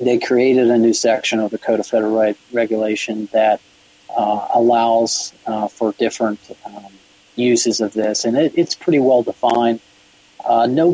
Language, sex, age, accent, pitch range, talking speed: English, male, 40-59, American, 105-125 Hz, 165 wpm